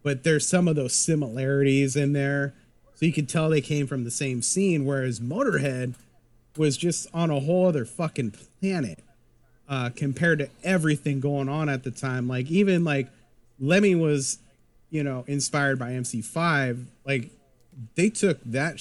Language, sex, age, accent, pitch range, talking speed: English, male, 30-49, American, 125-150 Hz, 165 wpm